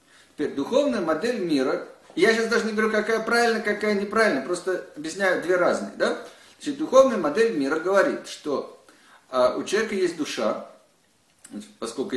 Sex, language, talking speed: male, Russian, 130 wpm